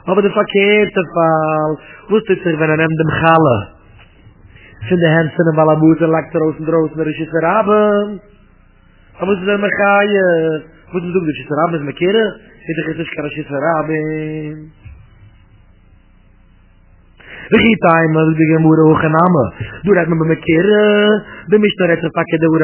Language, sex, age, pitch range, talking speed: English, male, 30-49, 150-180 Hz, 55 wpm